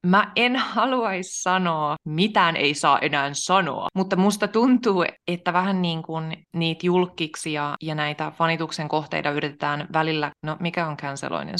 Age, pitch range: 20-39, 145-170 Hz